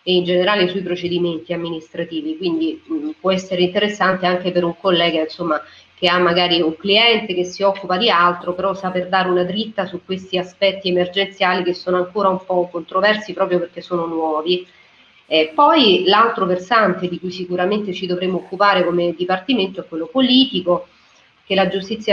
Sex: female